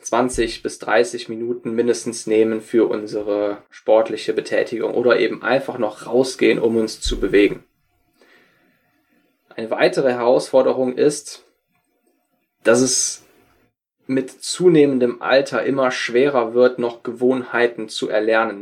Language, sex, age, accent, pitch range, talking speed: German, male, 20-39, German, 115-140 Hz, 115 wpm